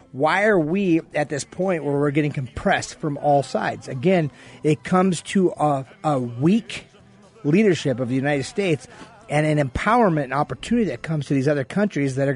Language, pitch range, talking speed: English, 145-190 Hz, 185 wpm